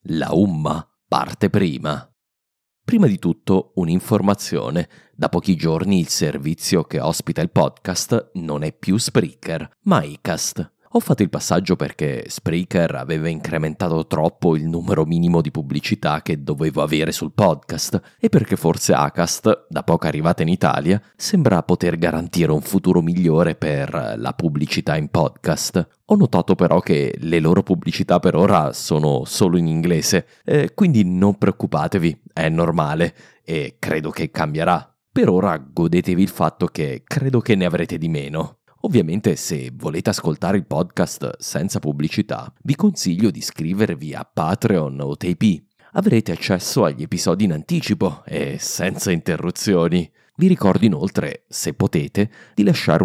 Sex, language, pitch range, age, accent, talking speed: male, English, 80-95 Hz, 30-49, Italian, 145 wpm